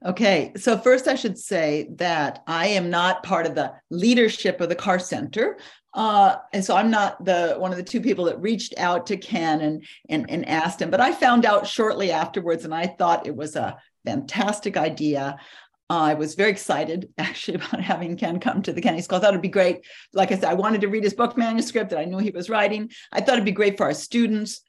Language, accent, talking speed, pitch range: English, American, 235 wpm, 170-225 Hz